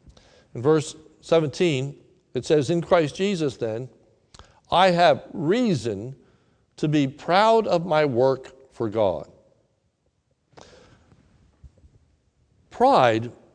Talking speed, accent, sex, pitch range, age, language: 95 wpm, American, male, 130-175 Hz, 60-79, English